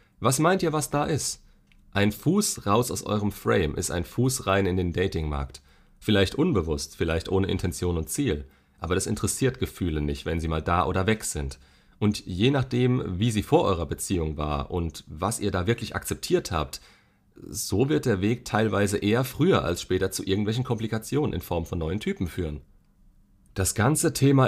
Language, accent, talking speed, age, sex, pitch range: German, German, 185 wpm, 40-59, male, 80-110 Hz